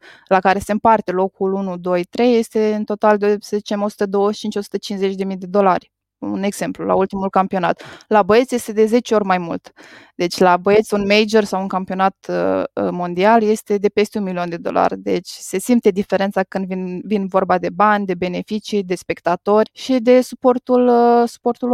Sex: female